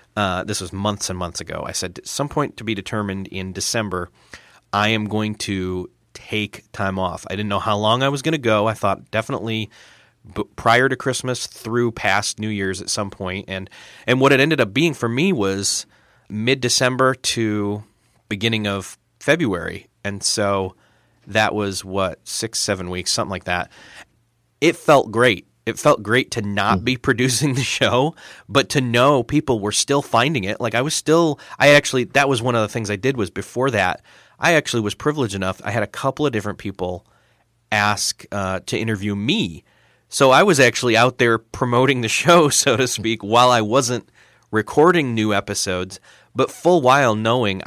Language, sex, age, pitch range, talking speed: English, male, 30-49, 100-125 Hz, 190 wpm